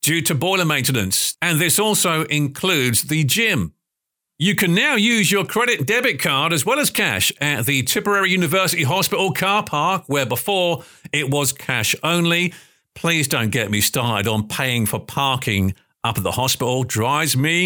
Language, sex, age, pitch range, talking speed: English, male, 50-69, 140-190 Hz, 170 wpm